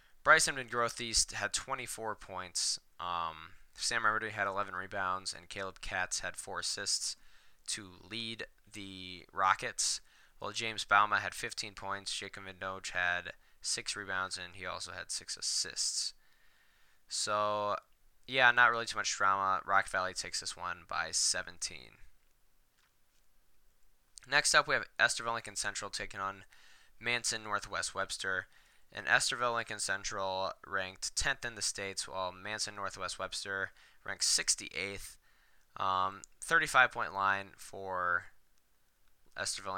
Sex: male